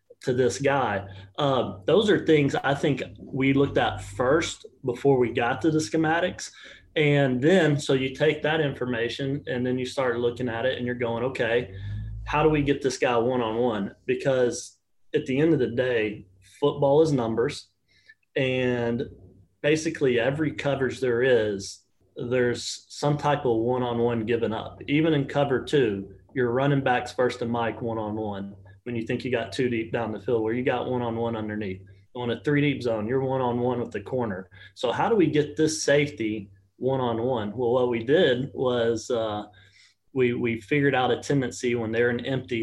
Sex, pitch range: male, 110-135 Hz